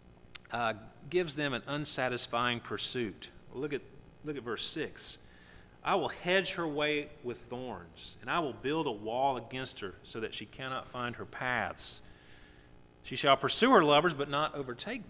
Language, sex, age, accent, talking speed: English, male, 40-59, American, 165 wpm